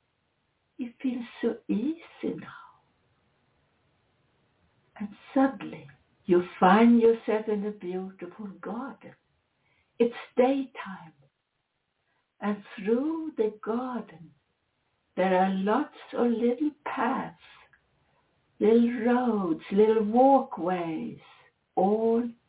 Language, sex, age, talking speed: English, female, 60-79, 85 wpm